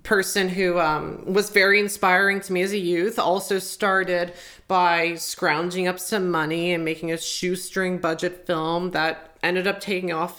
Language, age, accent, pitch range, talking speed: English, 30-49, American, 170-195 Hz, 170 wpm